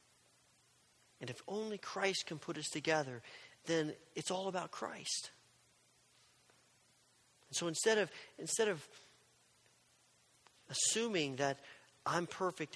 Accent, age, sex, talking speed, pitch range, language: American, 40-59, male, 110 wpm, 150-200 Hz, English